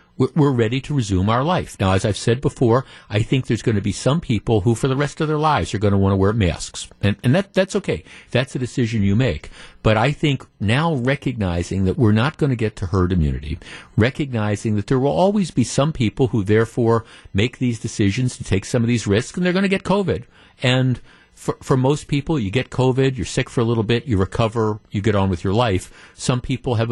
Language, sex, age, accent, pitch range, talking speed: English, male, 50-69, American, 110-140 Hz, 240 wpm